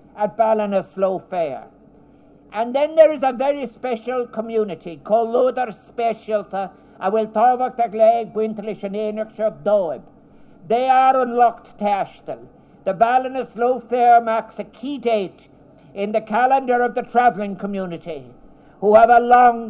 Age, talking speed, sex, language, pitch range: 60-79, 115 wpm, male, English, 210-245 Hz